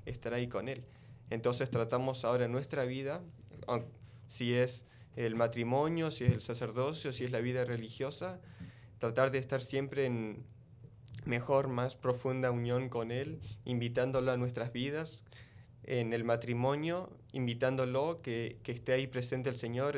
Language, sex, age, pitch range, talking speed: Spanish, male, 20-39, 115-130 Hz, 145 wpm